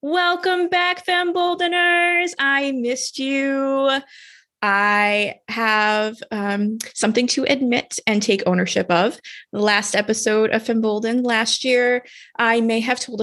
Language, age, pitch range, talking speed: English, 20-39, 215-270 Hz, 125 wpm